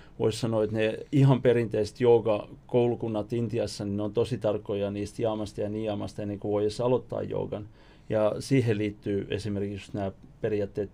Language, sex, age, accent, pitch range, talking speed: Finnish, male, 30-49, native, 105-120 Hz, 150 wpm